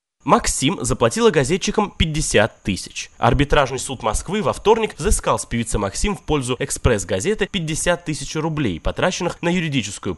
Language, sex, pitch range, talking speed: Russian, male, 125-185 Hz, 135 wpm